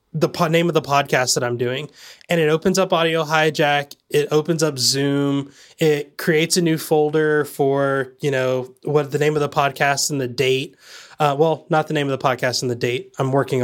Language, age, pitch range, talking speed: English, 20-39, 140-170 Hz, 210 wpm